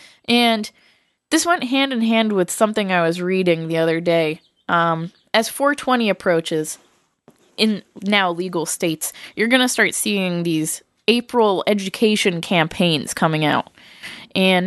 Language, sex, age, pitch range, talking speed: English, female, 20-39, 175-230 Hz, 140 wpm